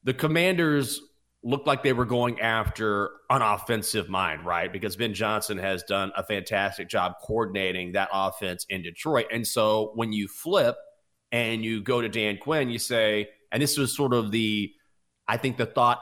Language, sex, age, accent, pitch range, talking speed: English, male, 30-49, American, 105-130 Hz, 180 wpm